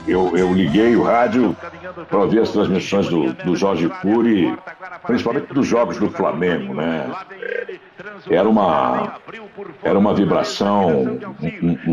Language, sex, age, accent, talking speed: Portuguese, male, 60-79, Brazilian, 125 wpm